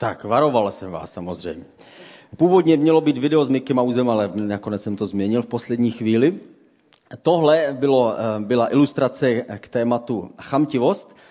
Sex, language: male, Czech